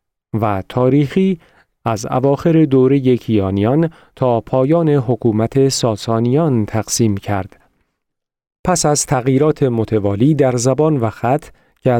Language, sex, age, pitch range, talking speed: Persian, male, 40-59, 110-145 Hz, 105 wpm